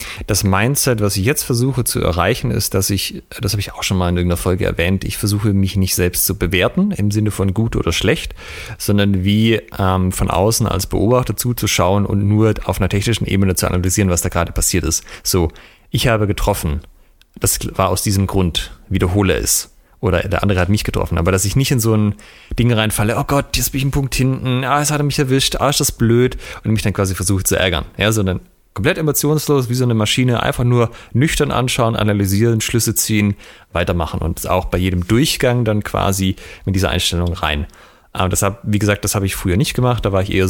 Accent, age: German, 30-49